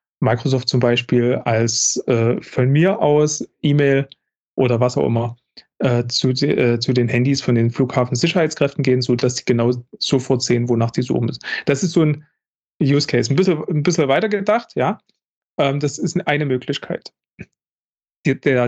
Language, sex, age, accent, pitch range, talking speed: German, male, 30-49, German, 130-170 Hz, 165 wpm